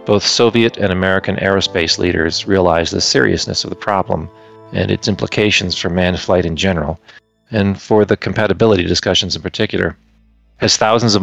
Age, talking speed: 40-59, 160 wpm